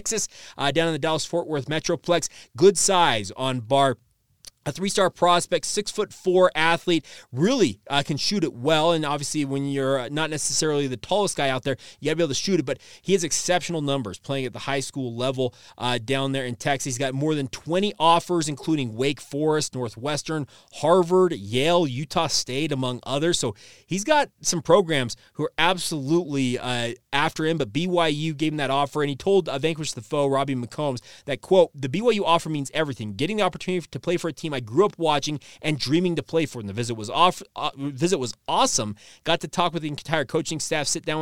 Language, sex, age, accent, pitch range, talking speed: English, male, 30-49, American, 130-165 Hz, 210 wpm